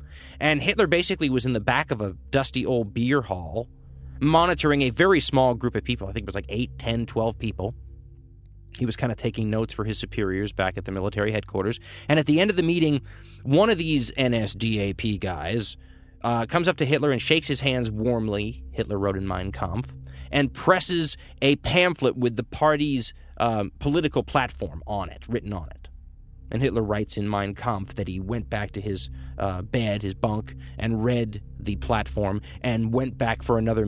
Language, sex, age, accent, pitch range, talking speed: English, male, 20-39, American, 100-140 Hz, 195 wpm